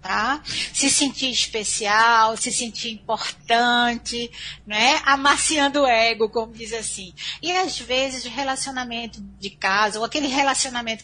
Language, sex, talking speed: Portuguese, female, 125 wpm